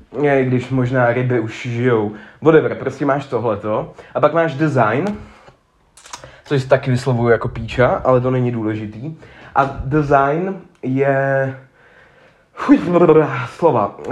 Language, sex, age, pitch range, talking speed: Czech, male, 20-39, 120-145 Hz, 130 wpm